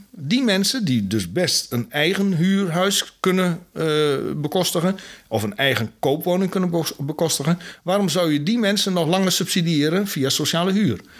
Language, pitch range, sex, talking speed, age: Dutch, 130-180 Hz, male, 150 wpm, 60-79